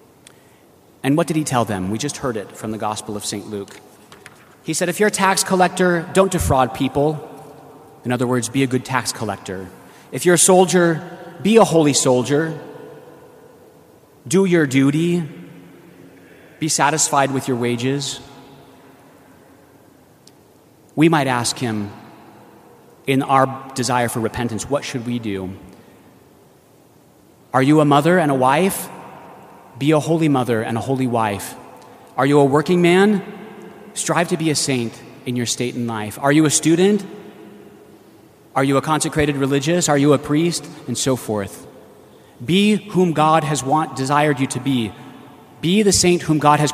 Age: 30-49